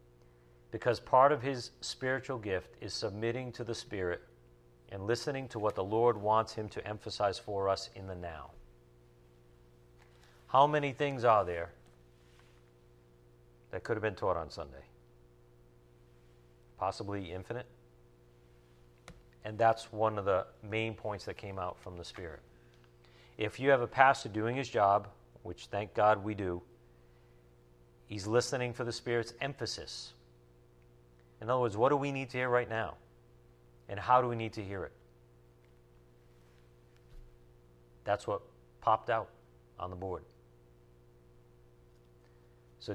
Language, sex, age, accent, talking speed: English, male, 50-69, American, 140 wpm